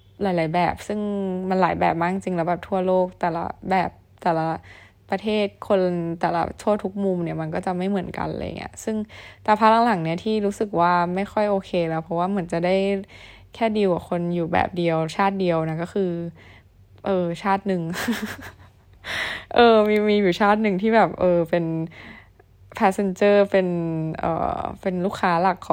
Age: 20-39